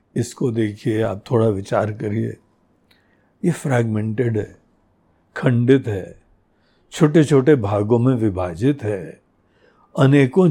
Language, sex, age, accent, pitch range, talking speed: Hindi, male, 60-79, native, 110-150 Hz, 105 wpm